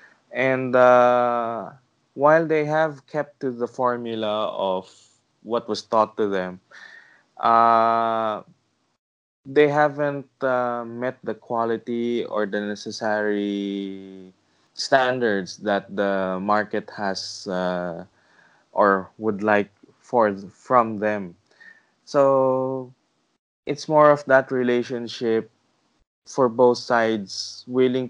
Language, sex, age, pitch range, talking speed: English, male, 20-39, 100-125 Hz, 100 wpm